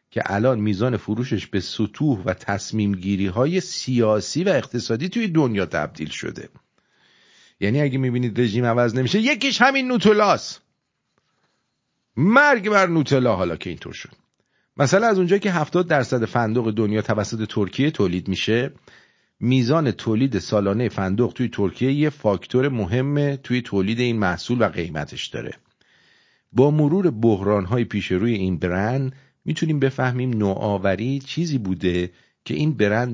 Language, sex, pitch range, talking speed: English, male, 95-145 Hz, 140 wpm